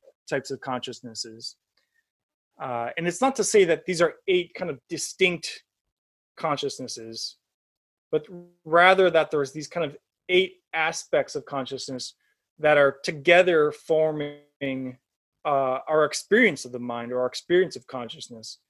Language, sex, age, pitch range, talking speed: English, male, 20-39, 125-165 Hz, 140 wpm